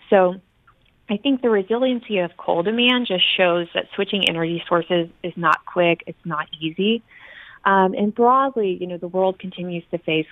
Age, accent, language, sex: 20-39, American, English, female